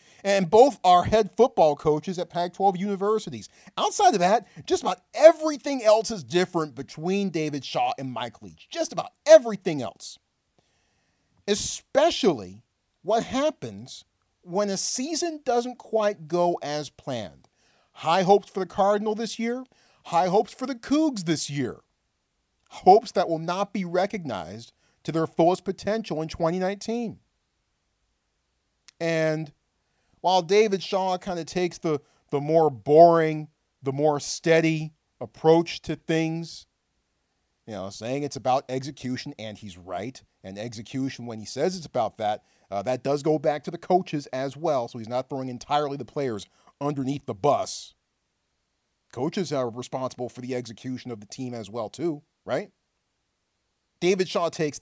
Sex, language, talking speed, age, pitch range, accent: male, English, 150 wpm, 40-59, 130-200 Hz, American